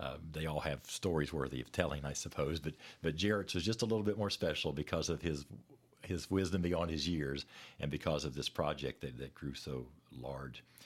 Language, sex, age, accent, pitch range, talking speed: English, male, 50-69, American, 70-85 Hz, 210 wpm